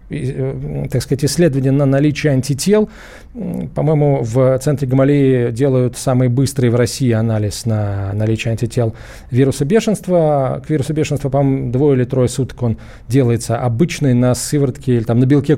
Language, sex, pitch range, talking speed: Russian, male, 125-165 Hz, 145 wpm